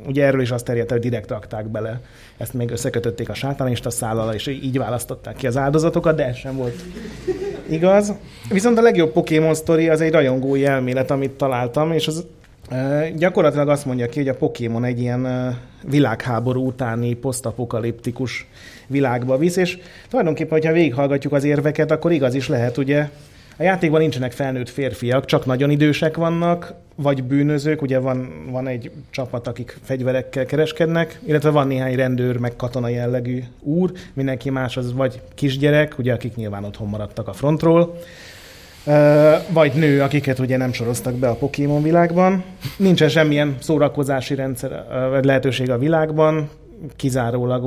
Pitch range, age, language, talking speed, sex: 125-155 Hz, 30-49, Hungarian, 150 wpm, male